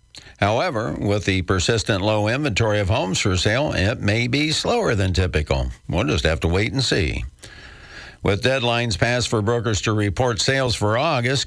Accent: American